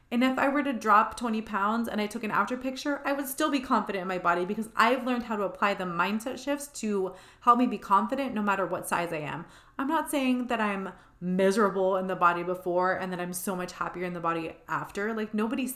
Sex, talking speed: female, 245 wpm